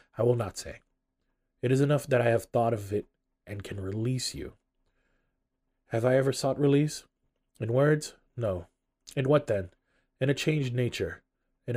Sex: male